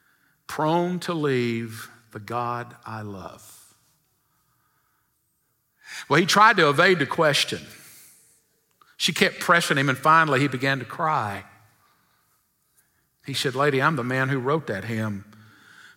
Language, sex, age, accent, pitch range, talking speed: English, male, 50-69, American, 120-195 Hz, 130 wpm